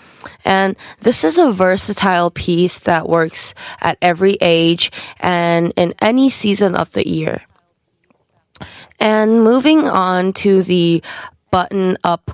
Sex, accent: female, American